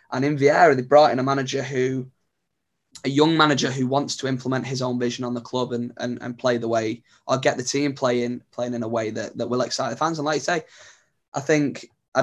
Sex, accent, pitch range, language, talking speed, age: male, British, 120-130 Hz, English, 245 wpm, 10-29